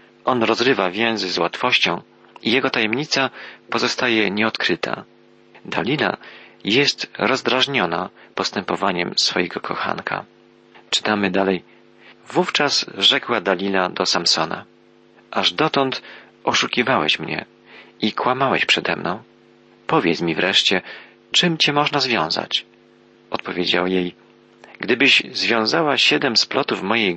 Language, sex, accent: Polish, male, native